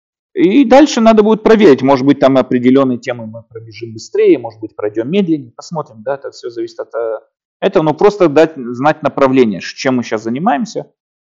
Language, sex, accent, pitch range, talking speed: Russian, male, native, 120-185 Hz, 175 wpm